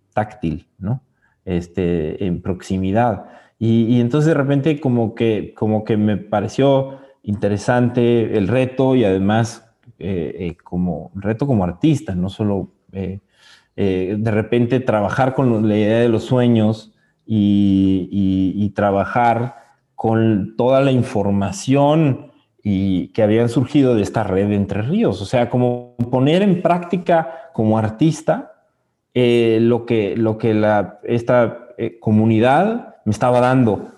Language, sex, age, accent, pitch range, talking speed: Spanish, male, 30-49, Mexican, 95-125 Hz, 140 wpm